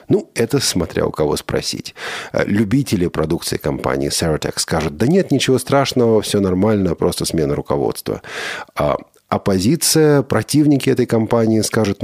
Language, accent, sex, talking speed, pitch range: Russian, native, male, 125 wpm, 95-120 Hz